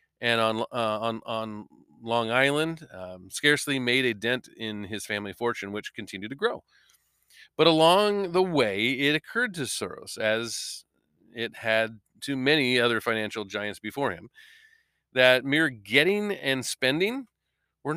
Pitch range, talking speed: 115-145 Hz, 145 wpm